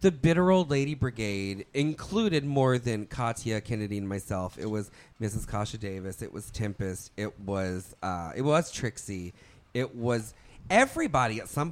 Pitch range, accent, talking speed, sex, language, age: 100-140 Hz, American, 160 wpm, male, English, 30-49